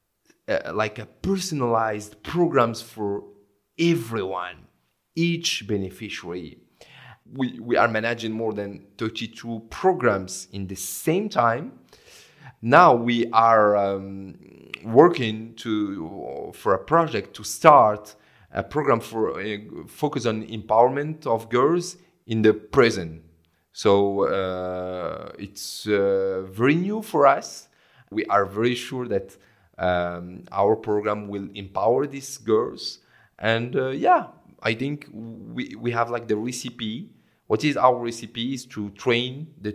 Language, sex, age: English, male, 40-59